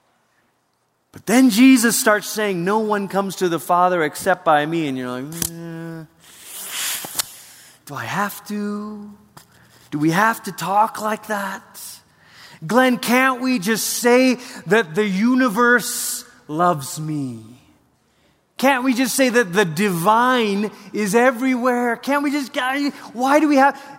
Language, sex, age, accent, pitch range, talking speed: English, male, 30-49, American, 140-225 Hz, 140 wpm